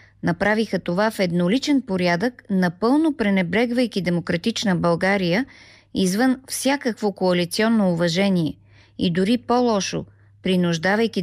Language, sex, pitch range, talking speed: Bulgarian, female, 175-235 Hz, 90 wpm